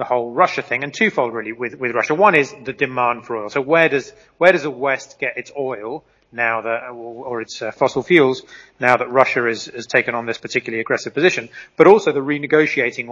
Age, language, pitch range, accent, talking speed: 30-49, English, 115-140 Hz, British, 225 wpm